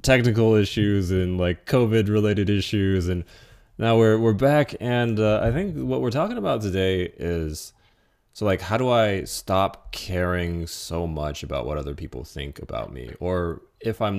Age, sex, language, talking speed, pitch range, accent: 20-39, male, English, 175 wpm, 90-130 Hz, American